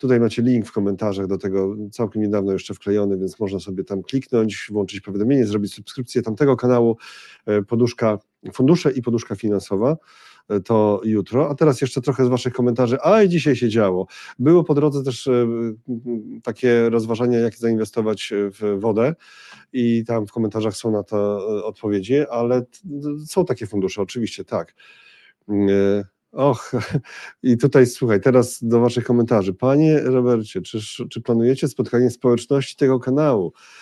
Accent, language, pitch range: native, Polish, 100-125 Hz